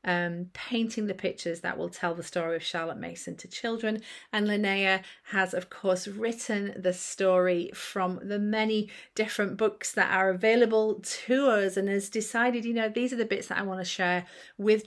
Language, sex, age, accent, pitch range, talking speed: English, female, 40-59, British, 180-235 Hz, 190 wpm